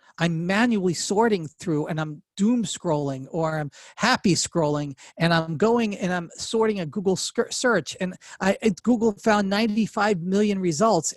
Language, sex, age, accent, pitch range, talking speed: English, male, 40-59, American, 155-205 Hz, 145 wpm